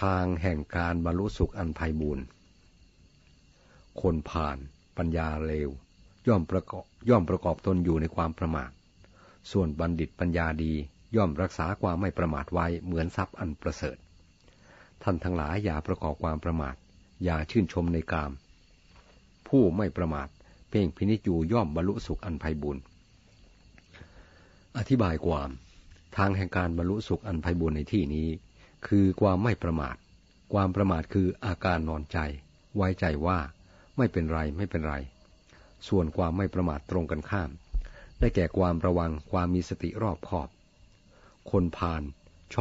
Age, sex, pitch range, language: 60-79, male, 80-95 Hz, Thai